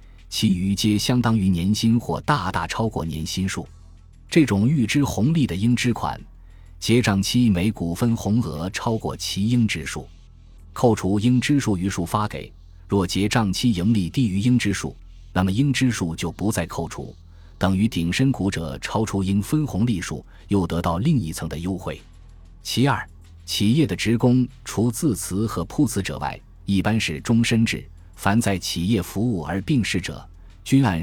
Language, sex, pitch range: Chinese, male, 85-115 Hz